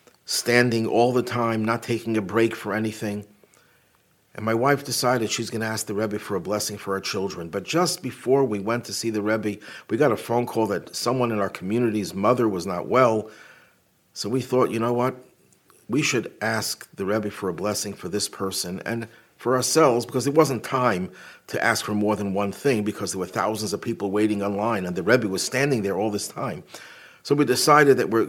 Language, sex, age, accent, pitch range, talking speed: English, male, 50-69, American, 105-120 Hz, 215 wpm